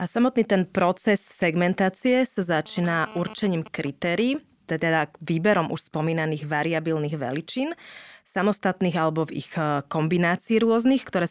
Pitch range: 155-200 Hz